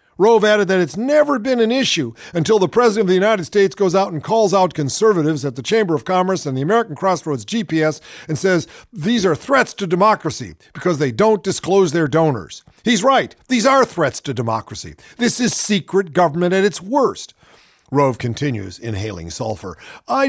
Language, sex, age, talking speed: English, male, 50-69, 185 wpm